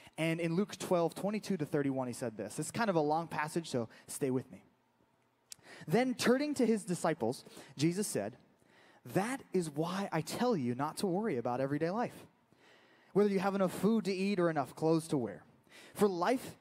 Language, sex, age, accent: English, male, 20-39, American